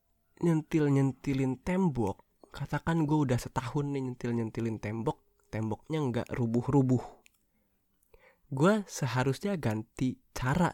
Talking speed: 90 wpm